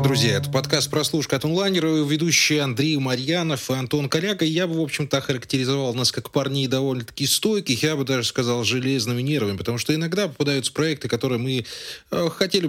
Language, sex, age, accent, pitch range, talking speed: Russian, male, 20-39, native, 120-155 Hz, 165 wpm